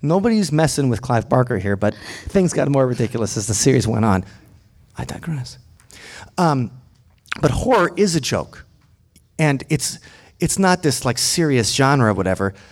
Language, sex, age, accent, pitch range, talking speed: English, male, 30-49, American, 110-150 Hz, 160 wpm